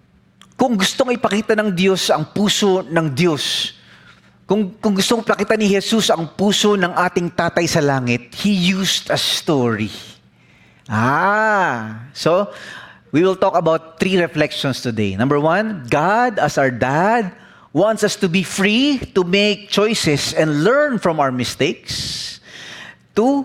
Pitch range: 135-205 Hz